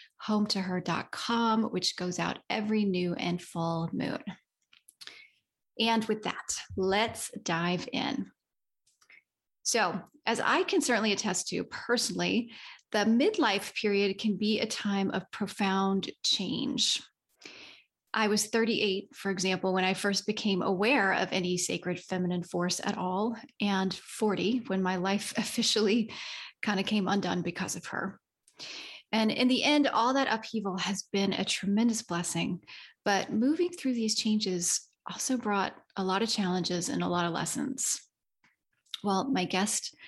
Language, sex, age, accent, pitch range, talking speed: English, female, 30-49, American, 185-225 Hz, 145 wpm